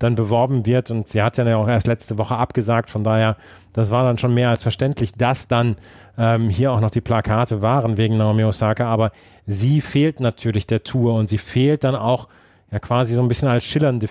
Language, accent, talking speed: German, German, 215 wpm